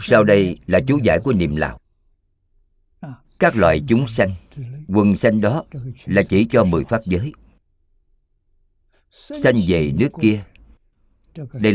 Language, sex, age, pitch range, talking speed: Vietnamese, male, 50-69, 80-120 Hz, 135 wpm